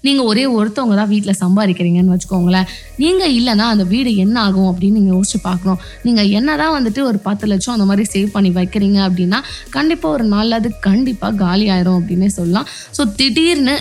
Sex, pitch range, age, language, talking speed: female, 195-255 Hz, 20-39, Tamil, 175 wpm